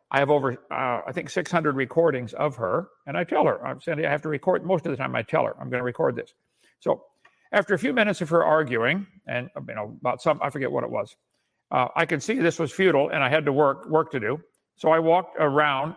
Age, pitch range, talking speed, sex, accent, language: 60-79, 140-170 Hz, 255 wpm, male, American, English